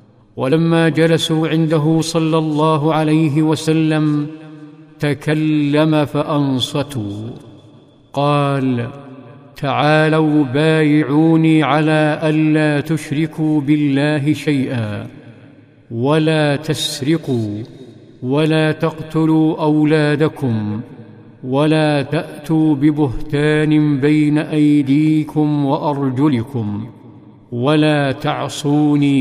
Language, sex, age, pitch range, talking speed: Arabic, male, 50-69, 140-155 Hz, 60 wpm